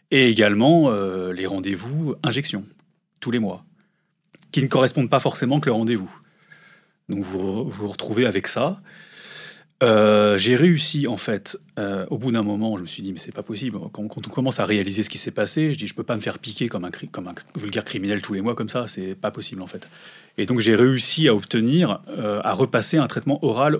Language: French